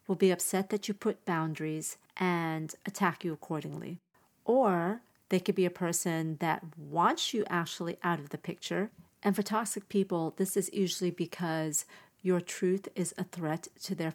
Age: 40-59